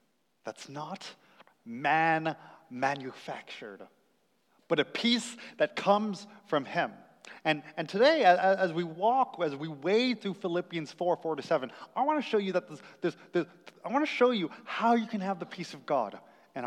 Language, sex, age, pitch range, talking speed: English, male, 30-49, 155-215 Hz, 175 wpm